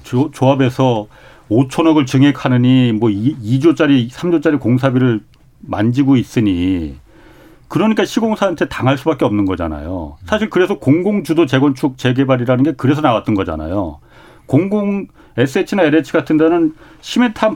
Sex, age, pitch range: male, 40-59, 125-170 Hz